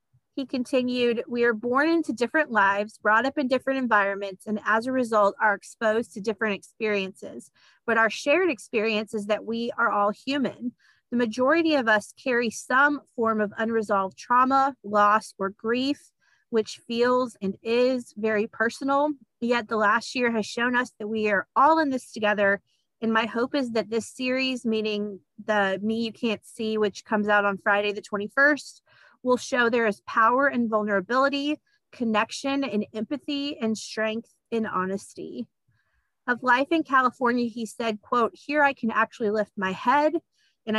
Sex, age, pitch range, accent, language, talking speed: female, 30-49, 210-255 Hz, American, English, 170 wpm